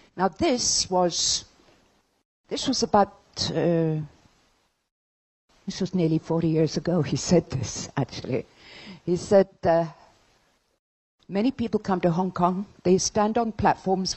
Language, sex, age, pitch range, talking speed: English, female, 50-69, 150-200 Hz, 125 wpm